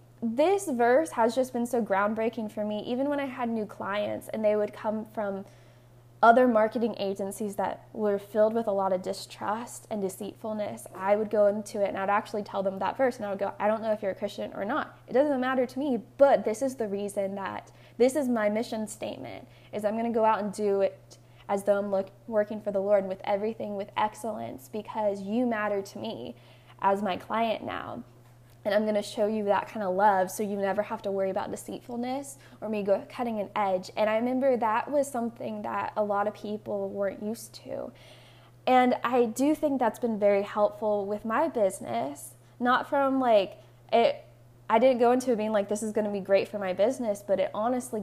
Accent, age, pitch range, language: American, 10-29, 195-230 Hz, English